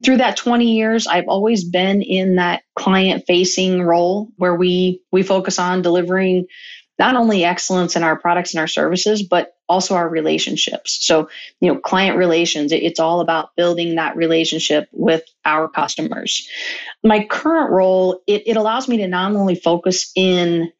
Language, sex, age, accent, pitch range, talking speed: English, female, 30-49, American, 170-190 Hz, 160 wpm